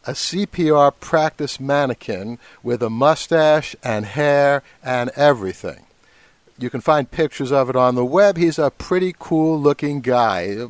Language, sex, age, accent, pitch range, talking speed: English, male, 60-79, American, 125-150 Hz, 145 wpm